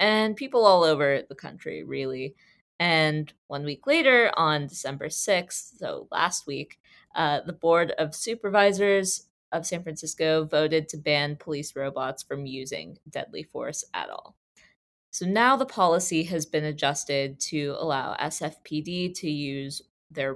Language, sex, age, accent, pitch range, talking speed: English, female, 20-39, American, 145-185 Hz, 145 wpm